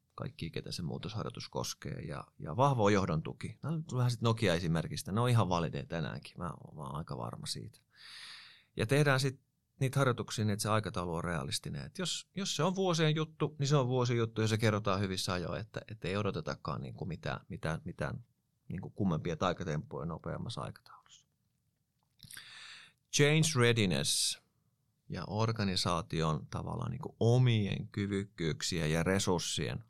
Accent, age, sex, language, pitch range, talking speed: native, 30-49, male, Finnish, 95-135 Hz, 155 wpm